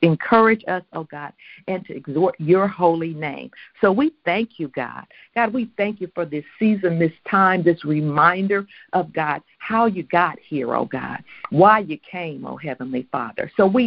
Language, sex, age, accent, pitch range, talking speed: English, female, 60-79, American, 160-200 Hz, 190 wpm